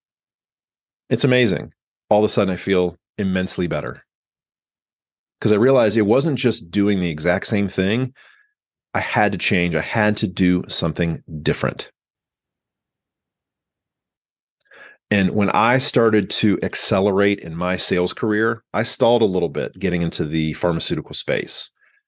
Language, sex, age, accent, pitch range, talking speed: English, male, 30-49, American, 90-110 Hz, 140 wpm